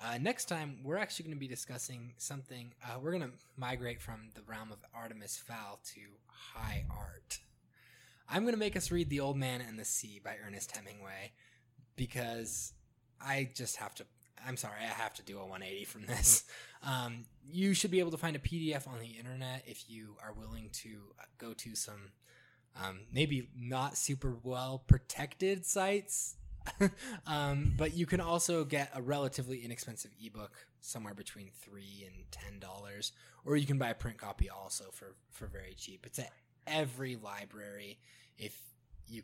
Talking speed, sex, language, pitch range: 175 wpm, male, English, 105-135 Hz